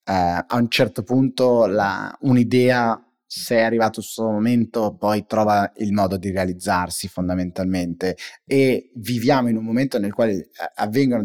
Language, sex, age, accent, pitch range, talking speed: Italian, male, 30-49, native, 100-135 Hz, 145 wpm